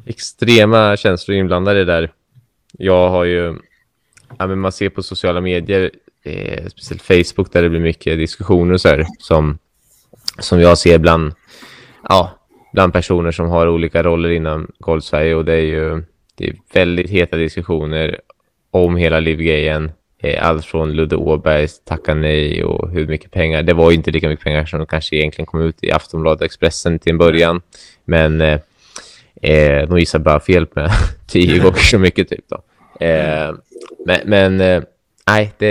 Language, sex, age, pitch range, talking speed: Swedish, male, 20-39, 80-95 Hz, 165 wpm